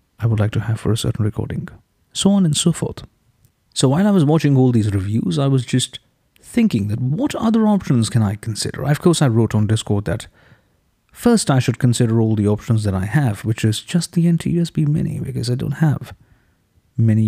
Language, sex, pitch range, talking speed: English, male, 110-155 Hz, 210 wpm